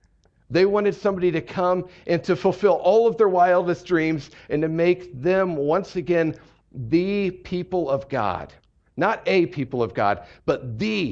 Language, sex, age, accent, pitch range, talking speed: English, male, 50-69, American, 105-155 Hz, 160 wpm